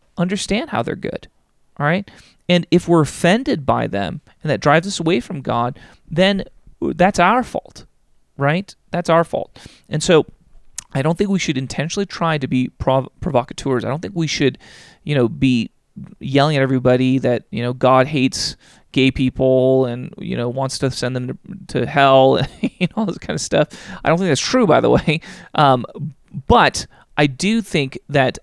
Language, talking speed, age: English, 185 wpm, 30-49